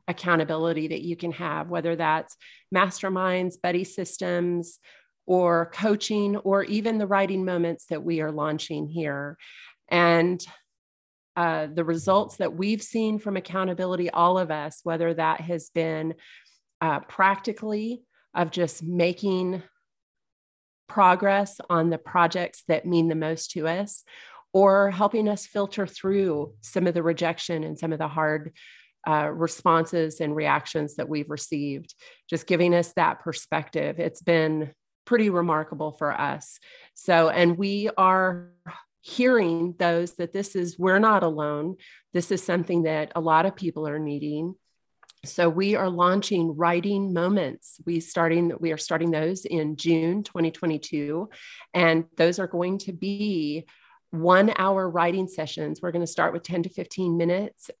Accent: American